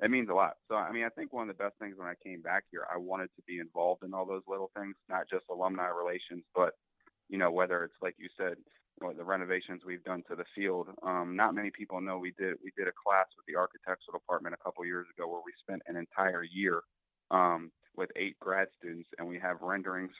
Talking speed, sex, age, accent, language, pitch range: 245 wpm, male, 30-49, American, English, 85-95 Hz